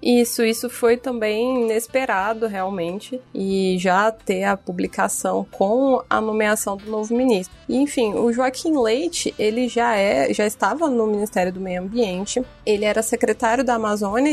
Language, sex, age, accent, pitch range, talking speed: Portuguese, female, 20-39, Brazilian, 200-245 Hz, 150 wpm